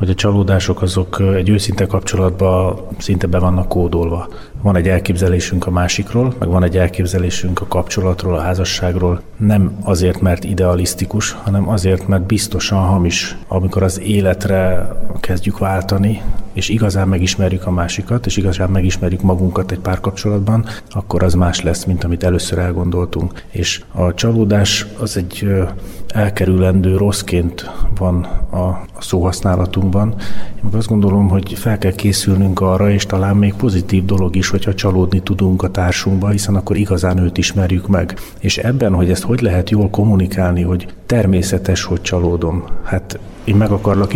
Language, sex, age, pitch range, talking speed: Hungarian, male, 30-49, 90-100 Hz, 145 wpm